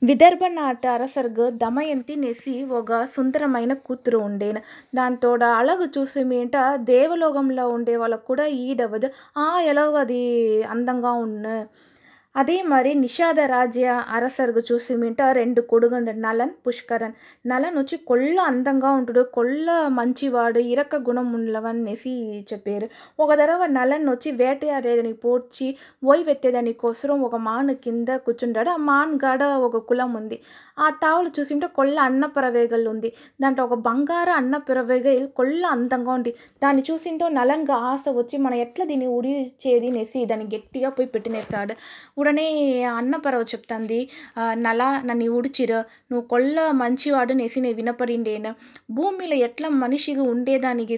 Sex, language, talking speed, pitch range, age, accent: female, Telugu, 120 wpm, 235-275 Hz, 20-39, native